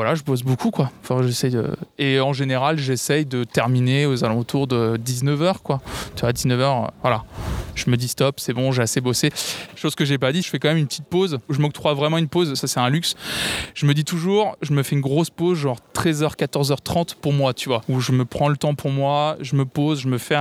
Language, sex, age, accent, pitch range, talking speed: French, male, 20-39, French, 125-150 Hz, 250 wpm